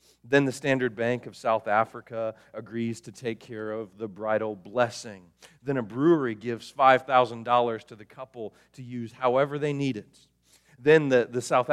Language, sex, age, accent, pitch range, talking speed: English, male, 40-59, American, 105-140 Hz, 170 wpm